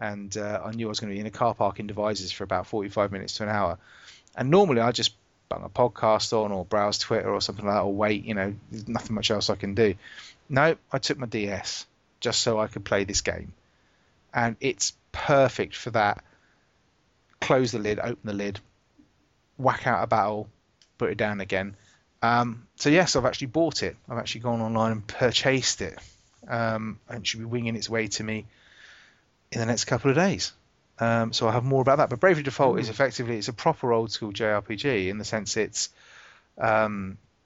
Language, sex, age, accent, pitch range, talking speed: English, male, 30-49, British, 105-120 Hz, 210 wpm